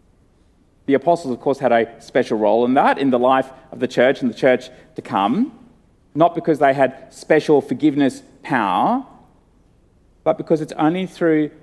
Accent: Australian